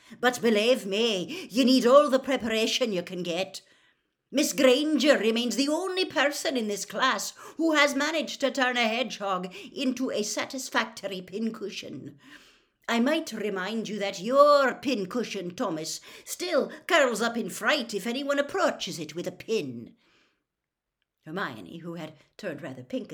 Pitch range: 180-255 Hz